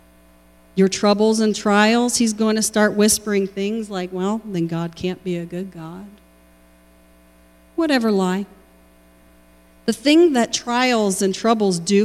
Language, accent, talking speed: English, American, 140 wpm